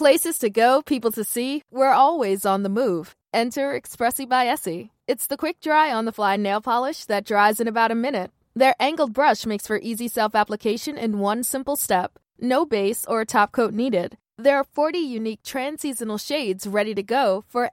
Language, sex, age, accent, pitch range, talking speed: Swedish, female, 20-39, American, 195-265 Hz, 185 wpm